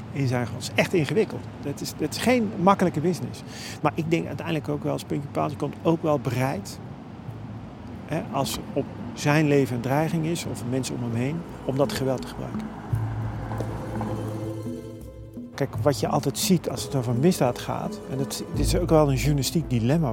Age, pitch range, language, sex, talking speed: 40-59, 120-155 Hz, Dutch, male, 185 wpm